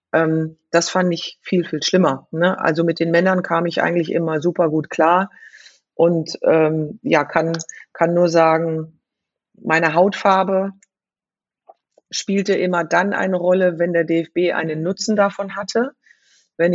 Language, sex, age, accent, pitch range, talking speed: German, female, 40-59, German, 165-190 Hz, 145 wpm